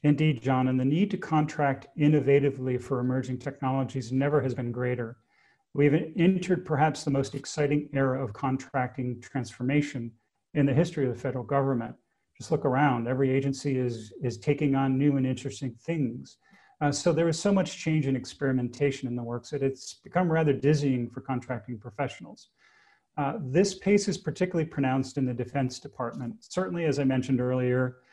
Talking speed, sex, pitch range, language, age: 170 wpm, male, 125-150 Hz, English, 40-59